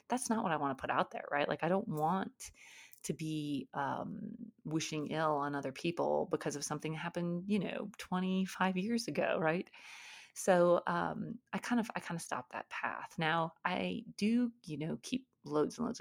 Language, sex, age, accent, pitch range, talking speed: English, female, 30-49, American, 155-220 Hz, 200 wpm